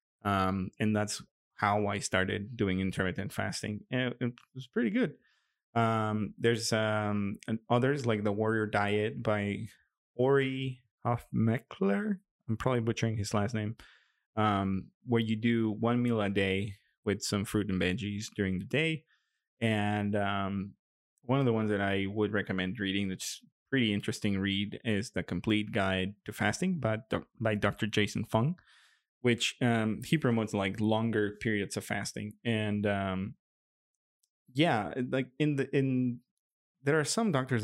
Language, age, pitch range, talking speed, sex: English, 20-39, 100-120 Hz, 150 wpm, male